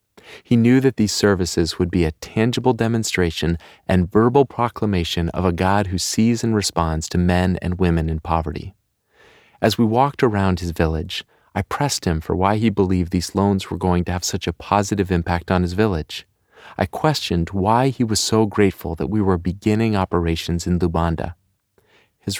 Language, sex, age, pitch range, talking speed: English, male, 40-59, 85-105 Hz, 180 wpm